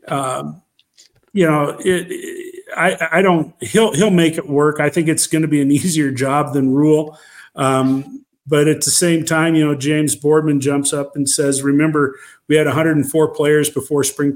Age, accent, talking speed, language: 50-69, American, 190 wpm, English